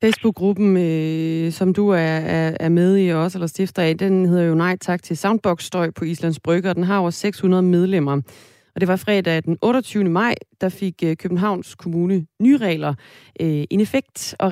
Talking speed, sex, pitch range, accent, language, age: 200 wpm, female, 160-195 Hz, native, Danish, 20-39